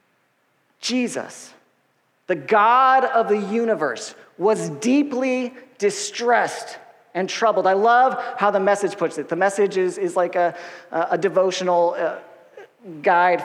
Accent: American